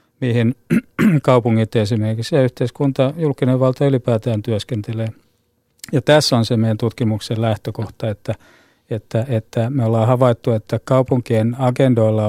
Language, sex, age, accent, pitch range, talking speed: Finnish, male, 50-69, native, 110-130 Hz, 120 wpm